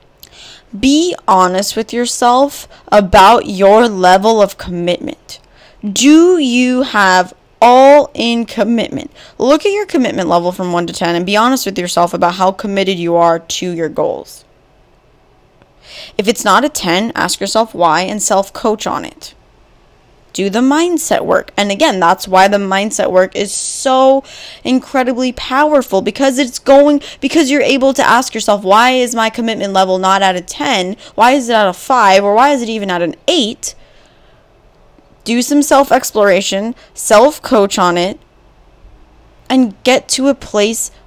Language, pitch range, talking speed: English, 195-275 Hz, 155 wpm